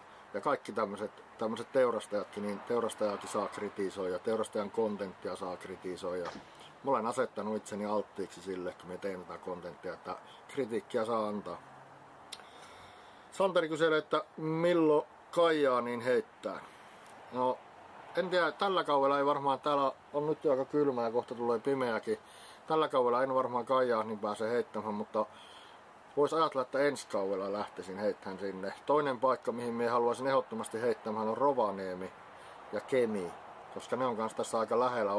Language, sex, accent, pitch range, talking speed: Finnish, male, native, 105-145 Hz, 145 wpm